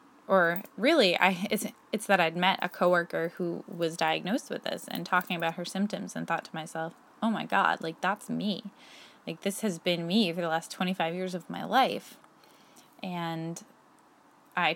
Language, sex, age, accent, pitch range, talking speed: English, female, 20-39, American, 170-215 Hz, 185 wpm